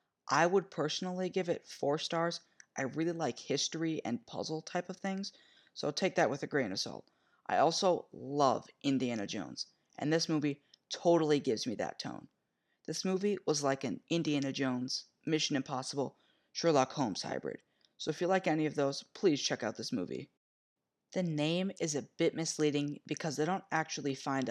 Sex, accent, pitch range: female, American, 140-170 Hz